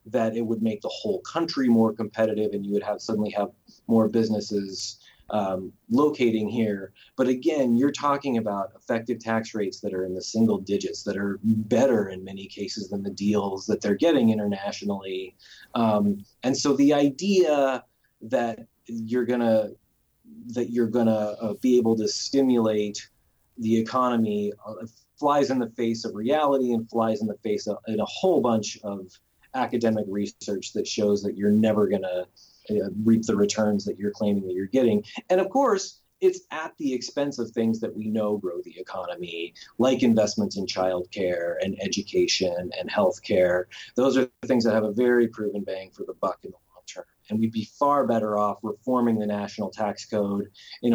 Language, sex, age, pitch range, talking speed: English, male, 30-49, 105-120 Hz, 180 wpm